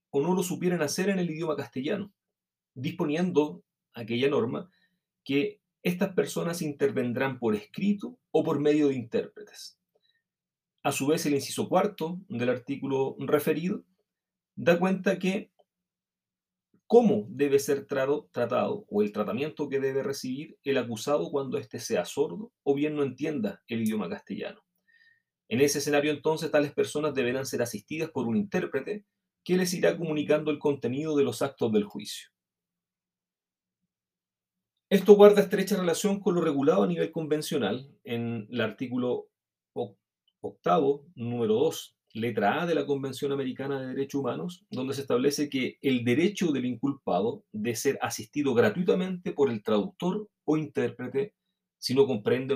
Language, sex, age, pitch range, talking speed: Spanish, male, 30-49, 140-190 Hz, 145 wpm